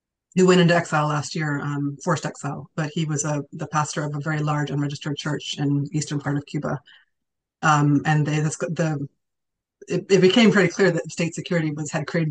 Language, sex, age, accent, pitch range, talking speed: English, female, 30-49, American, 145-170 Hz, 210 wpm